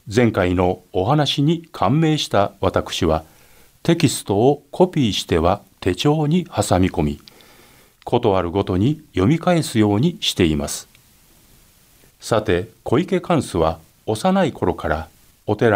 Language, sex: Japanese, male